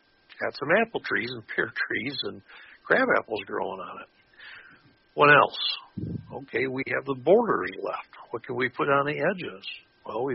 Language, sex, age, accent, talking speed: English, male, 60-79, American, 175 wpm